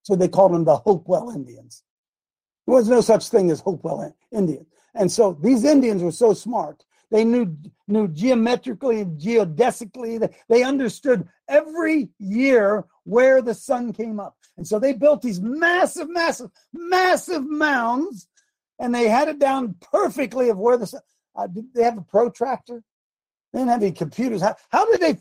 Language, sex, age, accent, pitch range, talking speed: English, male, 50-69, American, 195-265 Hz, 170 wpm